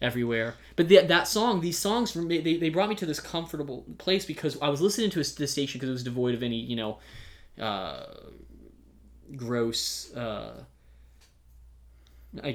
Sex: male